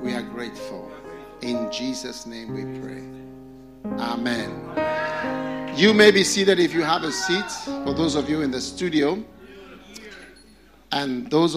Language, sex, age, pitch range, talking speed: English, male, 50-69, 130-160 Hz, 140 wpm